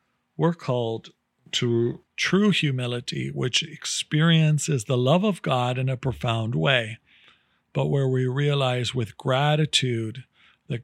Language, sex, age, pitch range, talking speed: English, male, 50-69, 115-140 Hz, 120 wpm